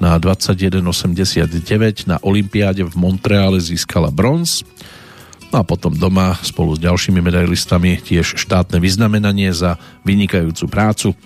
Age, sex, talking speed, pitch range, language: 40-59, male, 115 wpm, 90-105 Hz, Slovak